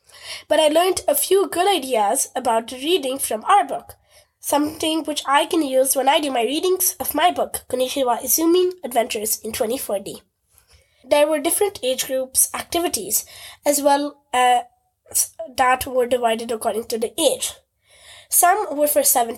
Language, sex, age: English, female, 20-39